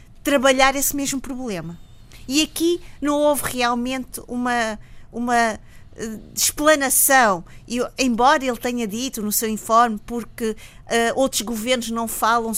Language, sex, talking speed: Portuguese, female, 115 wpm